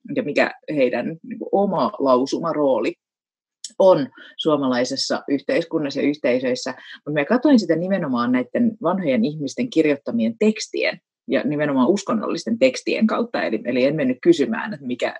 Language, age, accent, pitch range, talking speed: Finnish, 30-49, native, 150-245 Hz, 125 wpm